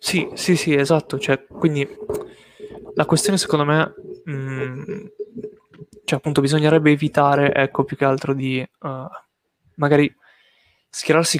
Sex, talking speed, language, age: male, 120 wpm, Italian, 20-39